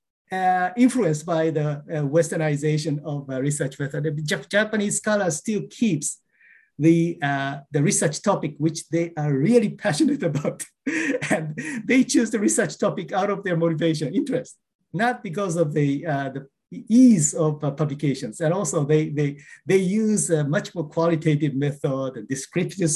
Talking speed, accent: 155 wpm, Japanese